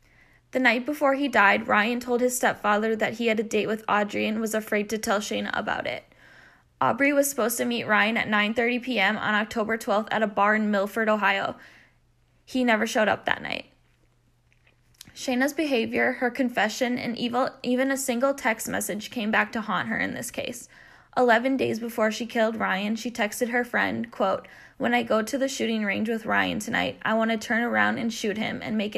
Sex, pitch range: female, 215-250 Hz